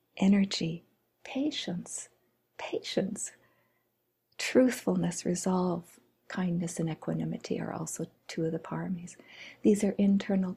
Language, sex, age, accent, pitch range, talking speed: English, female, 50-69, American, 185-230 Hz, 95 wpm